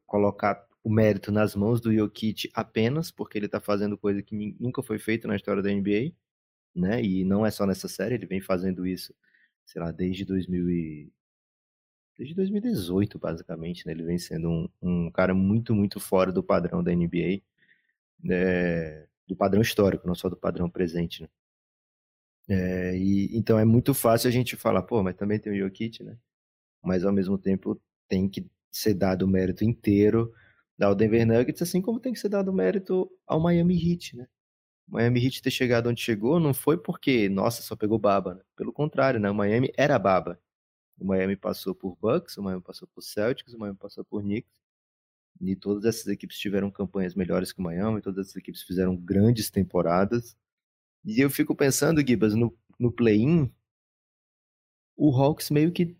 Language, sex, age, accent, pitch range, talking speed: Portuguese, male, 20-39, Brazilian, 95-120 Hz, 185 wpm